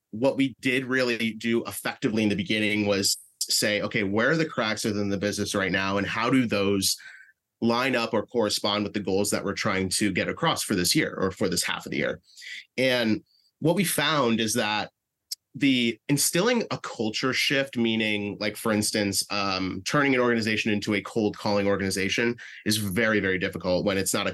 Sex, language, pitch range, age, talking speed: male, English, 100-125 Hz, 30-49, 195 wpm